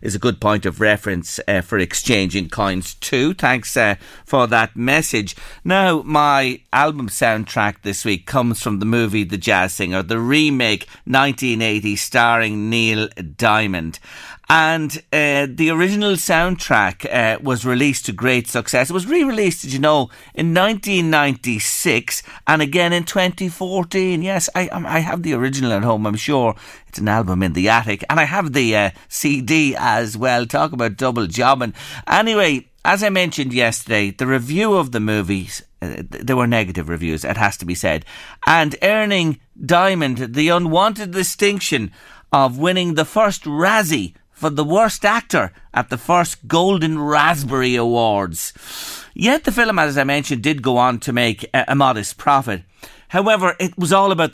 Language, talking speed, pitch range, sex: English, 160 wpm, 110-175 Hz, male